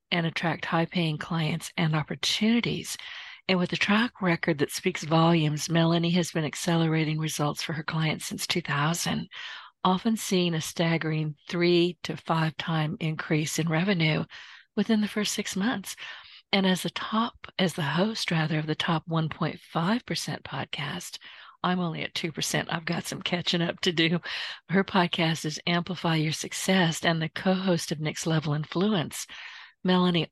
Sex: female